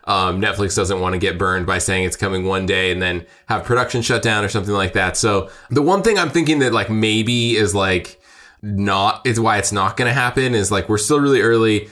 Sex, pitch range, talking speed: male, 100-120 Hz, 240 wpm